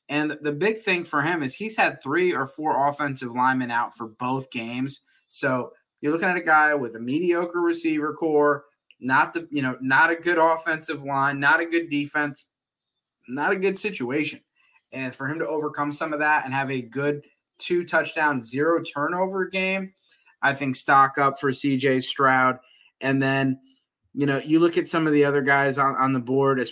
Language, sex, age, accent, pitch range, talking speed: English, male, 20-39, American, 135-165 Hz, 195 wpm